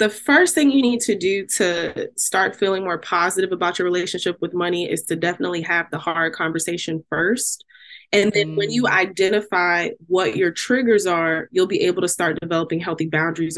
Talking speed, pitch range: 185 wpm, 175-245 Hz